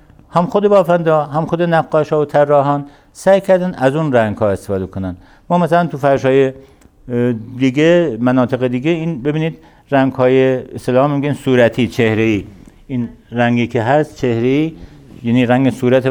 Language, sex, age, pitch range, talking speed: Persian, male, 60-79, 115-145 Hz, 160 wpm